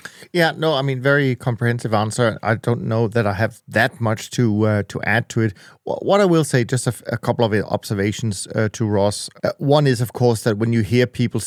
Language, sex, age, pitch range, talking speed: English, male, 30-49, 105-125 Hz, 230 wpm